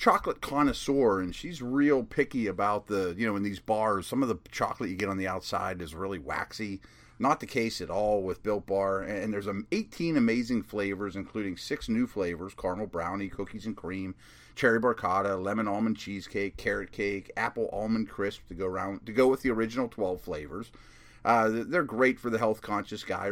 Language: English